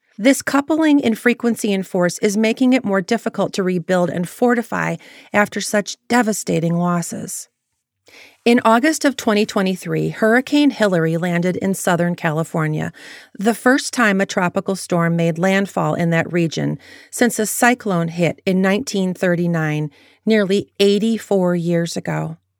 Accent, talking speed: American, 135 wpm